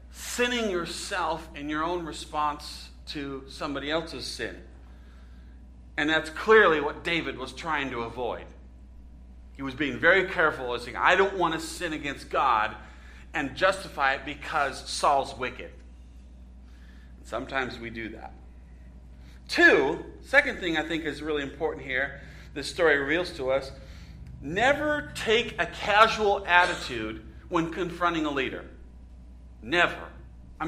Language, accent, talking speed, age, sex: English, American, 135 wpm, 40-59, male